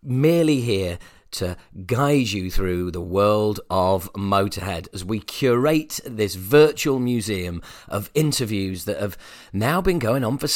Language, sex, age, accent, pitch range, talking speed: English, male, 40-59, British, 95-130 Hz, 140 wpm